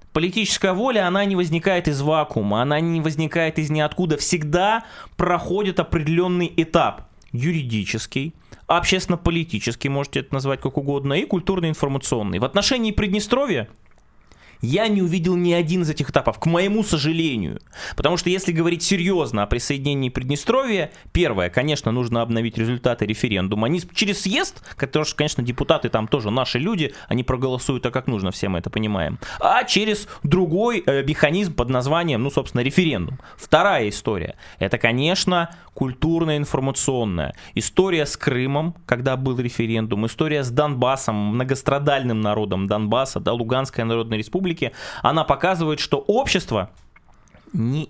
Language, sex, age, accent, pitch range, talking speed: Russian, male, 20-39, native, 125-175 Hz, 135 wpm